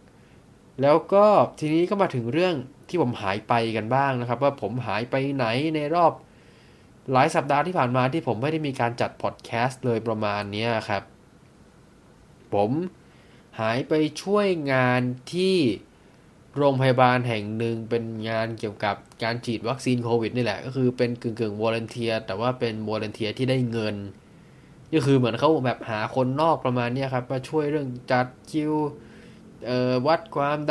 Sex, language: male, Thai